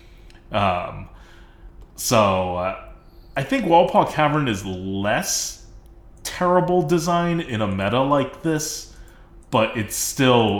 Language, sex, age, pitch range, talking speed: English, male, 20-39, 90-110 Hz, 110 wpm